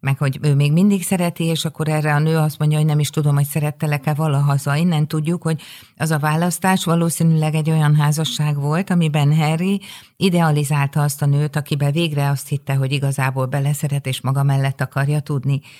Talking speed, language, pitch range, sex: 185 wpm, Hungarian, 140-165 Hz, female